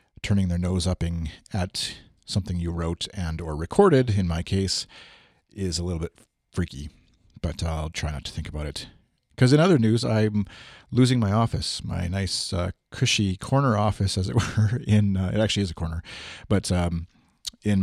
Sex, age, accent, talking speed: male, 40-59, American, 180 wpm